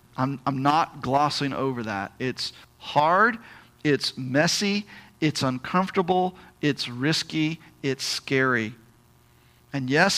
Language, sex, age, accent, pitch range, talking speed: English, male, 40-59, American, 145-215 Hz, 105 wpm